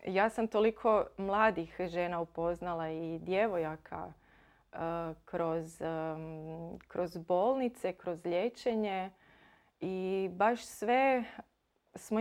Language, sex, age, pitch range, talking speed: Croatian, female, 30-49, 170-220 Hz, 85 wpm